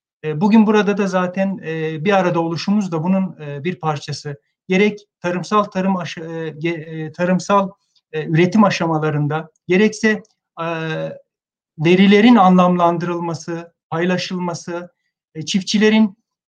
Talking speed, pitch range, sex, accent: 85 wpm, 170-205 Hz, male, native